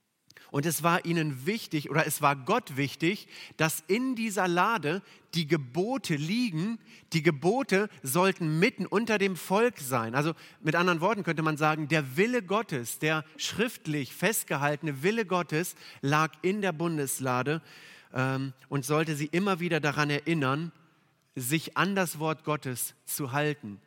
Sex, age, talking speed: male, 40-59, 150 wpm